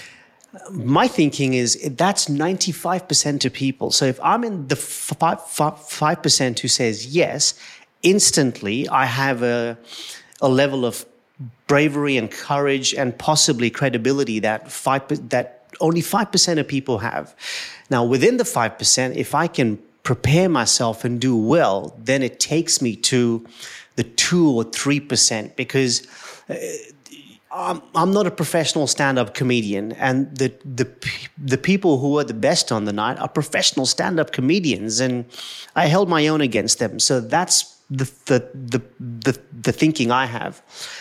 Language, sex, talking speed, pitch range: English, male, 155 wpm, 125-155 Hz